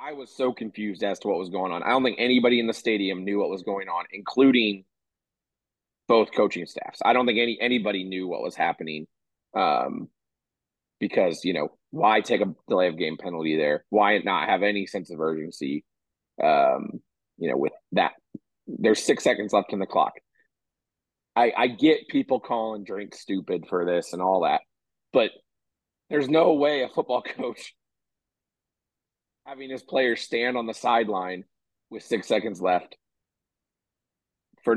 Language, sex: English, male